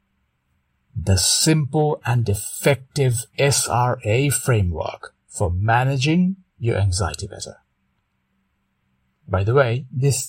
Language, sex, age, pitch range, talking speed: English, male, 60-79, 90-145 Hz, 85 wpm